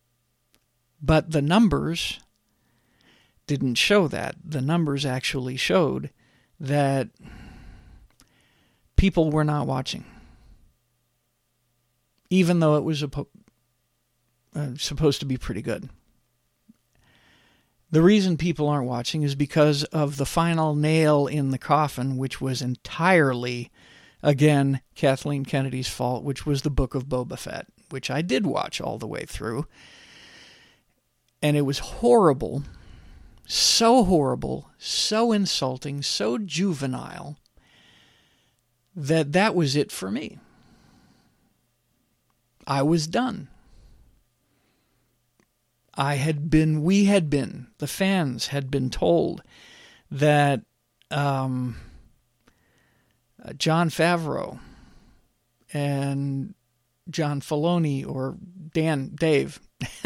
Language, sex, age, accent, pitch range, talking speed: English, male, 50-69, American, 120-155 Hz, 100 wpm